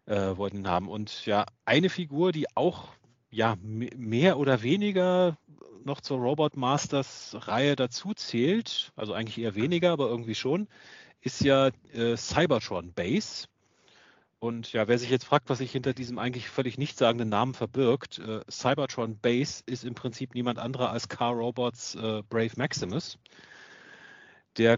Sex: male